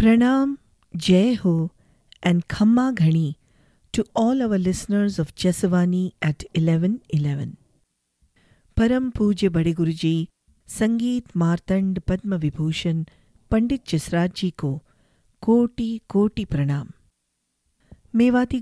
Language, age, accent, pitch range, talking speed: English, 50-69, Indian, 160-205 Hz, 95 wpm